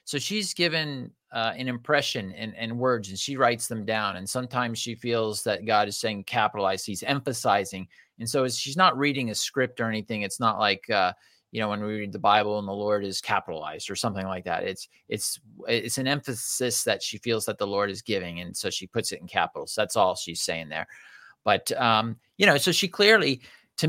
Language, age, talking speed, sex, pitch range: English, 30-49, 220 wpm, male, 105-135 Hz